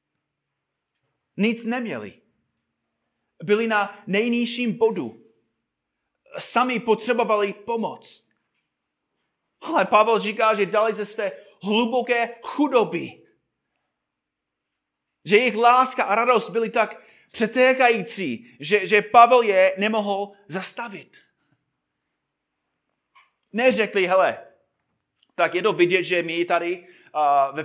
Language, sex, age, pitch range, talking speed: Czech, male, 30-49, 140-220 Hz, 95 wpm